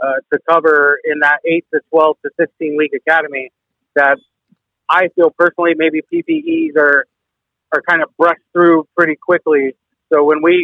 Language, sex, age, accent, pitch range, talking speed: English, male, 30-49, American, 150-170 Hz, 165 wpm